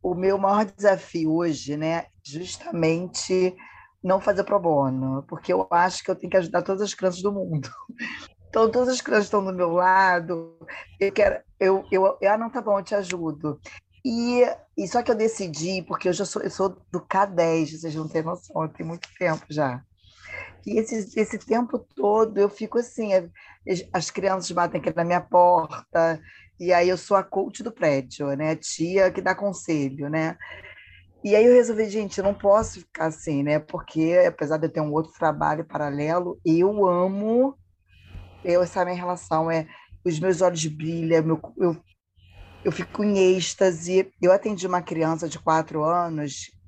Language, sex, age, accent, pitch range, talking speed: Portuguese, female, 20-39, Brazilian, 155-195 Hz, 185 wpm